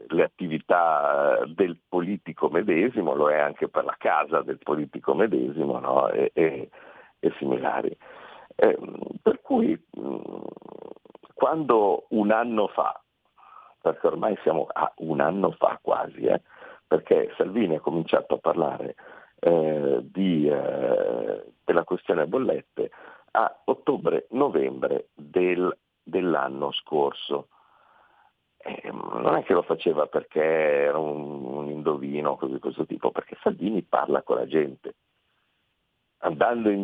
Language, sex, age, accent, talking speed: Italian, male, 50-69, native, 115 wpm